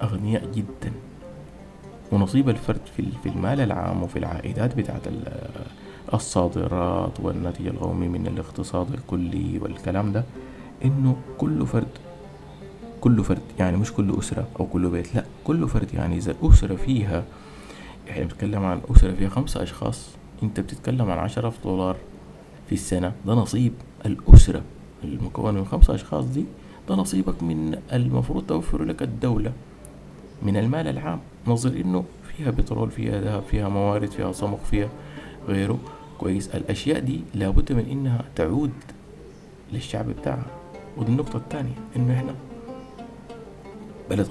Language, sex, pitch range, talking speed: Arabic, male, 90-120 Hz, 135 wpm